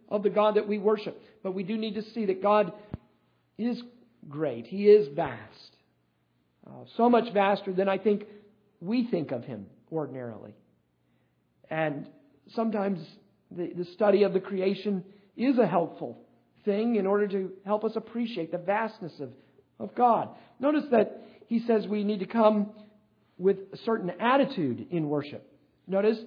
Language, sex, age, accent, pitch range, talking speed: English, male, 50-69, American, 175-220 Hz, 155 wpm